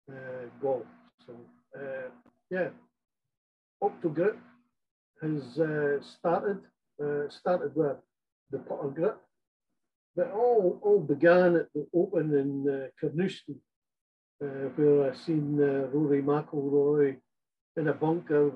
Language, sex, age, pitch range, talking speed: English, male, 50-69, 135-155 Hz, 115 wpm